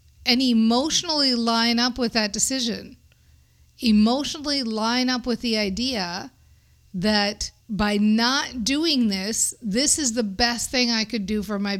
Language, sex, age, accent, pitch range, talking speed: English, female, 50-69, American, 200-250 Hz, 140 wpm